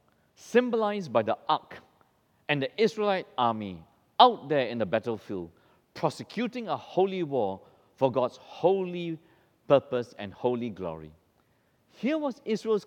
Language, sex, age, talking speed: English, male, 50-69, 125 wpm